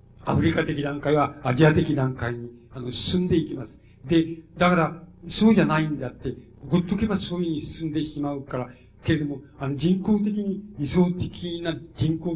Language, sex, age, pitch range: Japanese, male, 60-79, 135-160 Hz